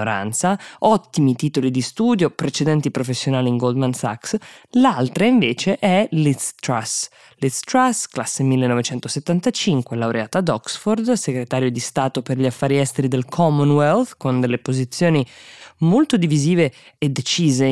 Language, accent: Italian, native